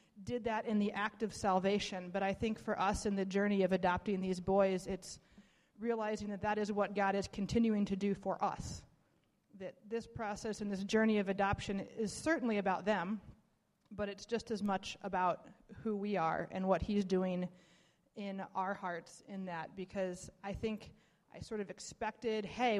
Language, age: English, 30-49